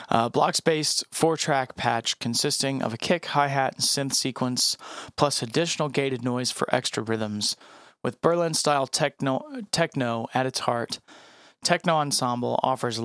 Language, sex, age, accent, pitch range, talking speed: English, male, 30-49, American, 120-140 Hz, 135 wpm